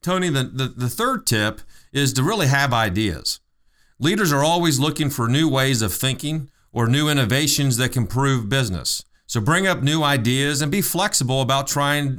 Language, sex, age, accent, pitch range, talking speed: English, male, 40-59, American, 120-150 Hz, 180 wpm